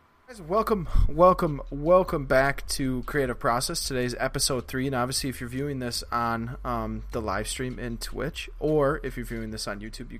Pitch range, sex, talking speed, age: 115-145 Hz, male, 180 wpm, 20-39